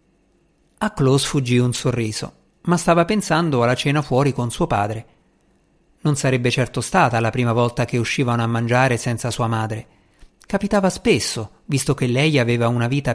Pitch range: 120-160 Hz